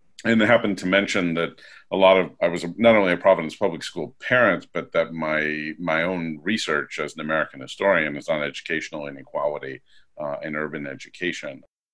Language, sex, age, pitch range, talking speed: English, male, 50-69, 80-100 Hz, 180 wpm